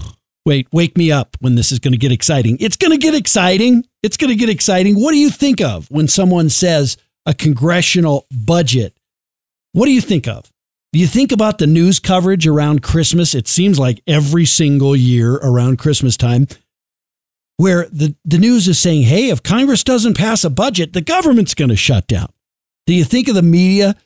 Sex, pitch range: male, 130-190 Hz